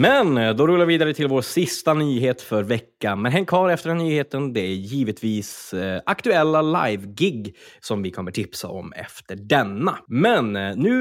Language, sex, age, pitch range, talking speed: Swedish, male, 20-39, 105-165 Hz, 170 wpm